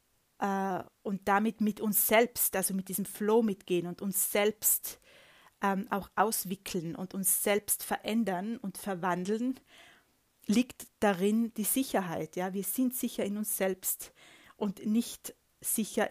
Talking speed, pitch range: 130 wpm, 180-220 Hz